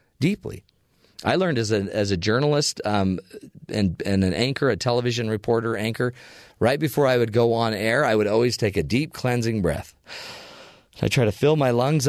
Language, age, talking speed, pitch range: English, 40-59, 190 wpm, 100-130 Hz